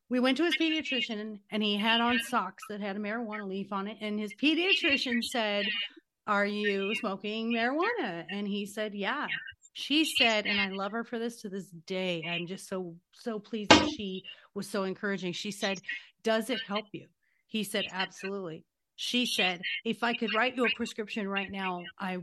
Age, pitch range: 40-59, 190-240 Hz